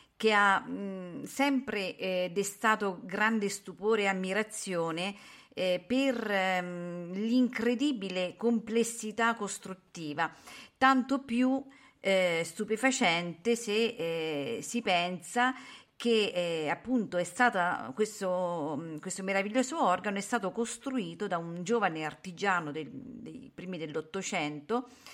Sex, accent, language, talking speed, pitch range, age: female, native, Italian, 95 wpm, 170-240 Hz, 40-59